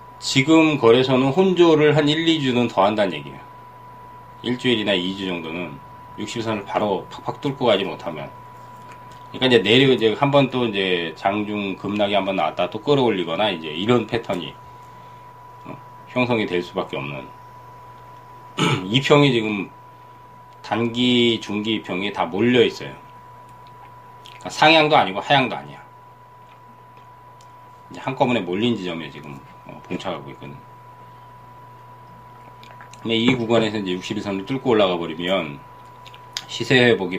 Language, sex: Korean, male